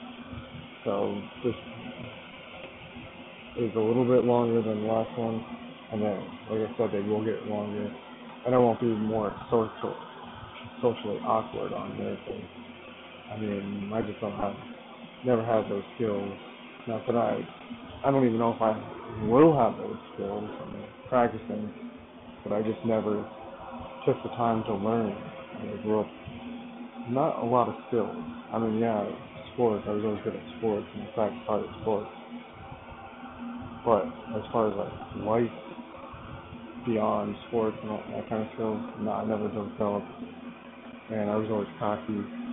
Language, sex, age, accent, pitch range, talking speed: English, male, 20-39, American, 105-125 Hz, 160 wpm